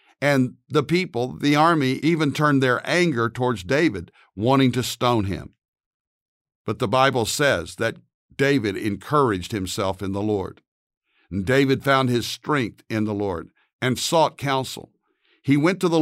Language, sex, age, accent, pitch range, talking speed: English, male, 60-79, American, 110-140 Hz, 150 wpm